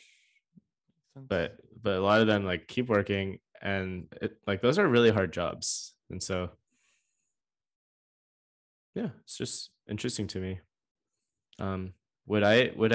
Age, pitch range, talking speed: 20-39, 85-110 Hz, 130 wpm